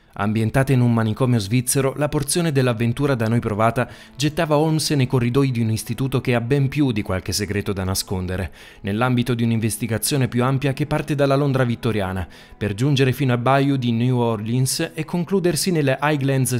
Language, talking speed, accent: Italian, 175 wpm, native